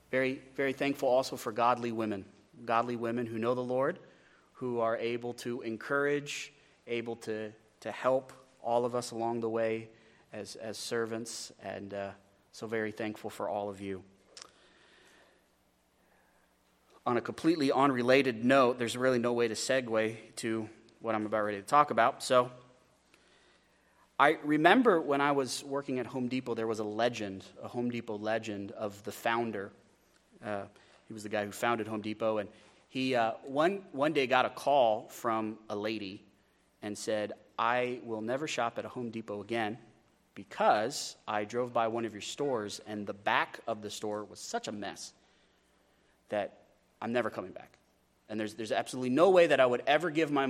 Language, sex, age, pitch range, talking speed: English, male, 30-49, 110-125 Hz, 175 wpm